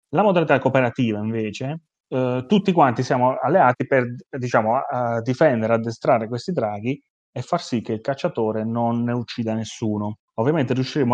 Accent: native